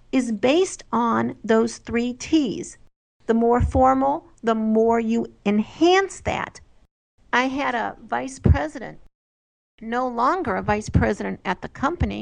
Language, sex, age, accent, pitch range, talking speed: English, female, 50-69, American, 225-280 Hz, 135 wpm